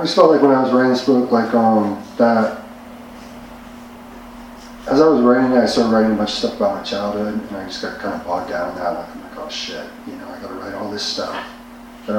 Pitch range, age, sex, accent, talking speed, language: 105-135 Hz, 30-49, male, American, 255 wpm, English